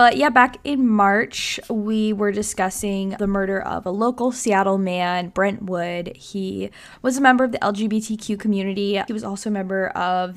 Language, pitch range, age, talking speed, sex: English, 190-220 Hz, 10-29, 180 wpm, female